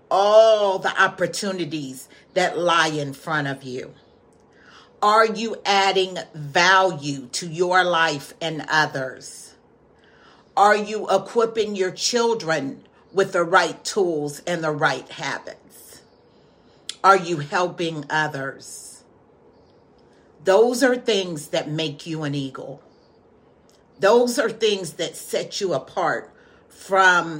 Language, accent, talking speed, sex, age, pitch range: English, American, 110 wpm, female, 40-59, 155-210 Hz